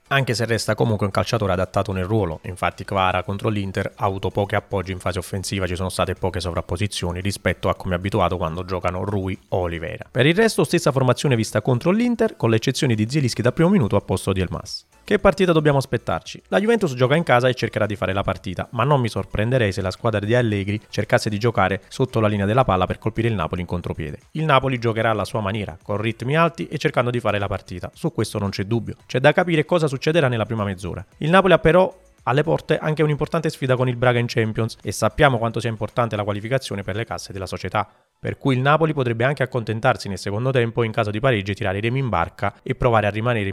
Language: Italian